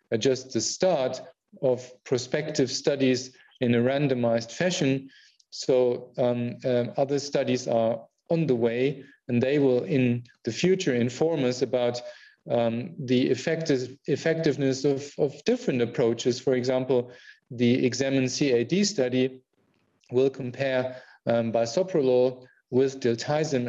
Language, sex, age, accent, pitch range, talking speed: English, male, 40-59, German, 120-140 Hz, 120 wpm